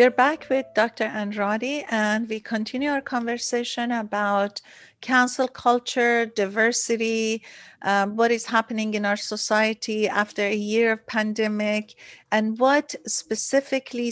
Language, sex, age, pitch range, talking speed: English, female, 50-69, 215-245 Hz, 125 wpm